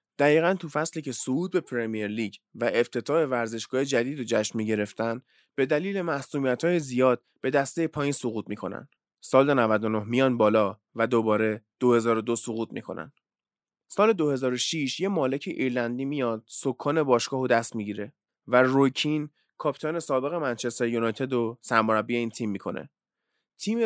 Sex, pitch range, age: male, 115-145 Hz, 20-39